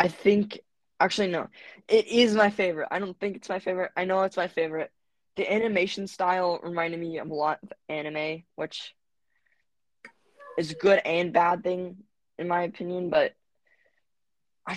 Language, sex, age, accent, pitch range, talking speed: English, female, 20-39, American, 170-205 Hz, 165 wpm